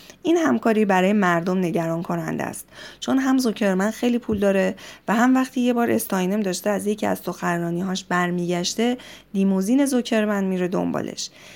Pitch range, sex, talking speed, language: 185-235 Hz, female, 150 wpm, Persian